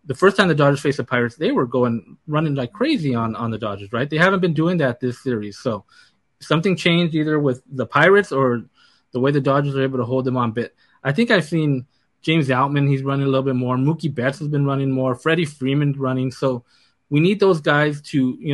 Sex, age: male, 20-39